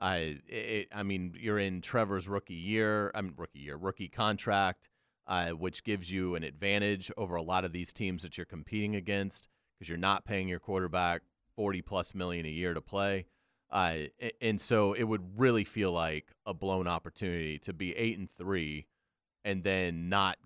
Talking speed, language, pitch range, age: 185 wpm, English, 90-110 Hz, 30-49